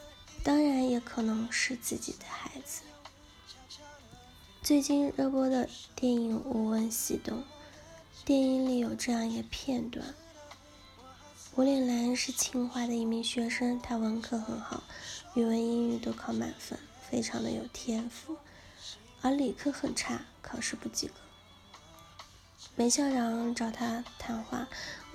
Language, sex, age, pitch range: Chinese, female, 20-39, 230-275 Hz